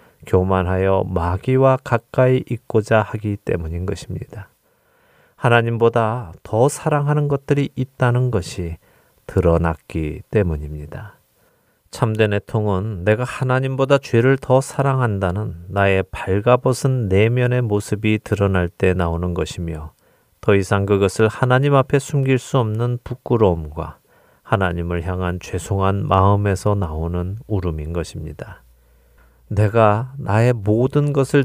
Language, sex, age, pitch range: Korean, male, 40-59, 90-120 Hz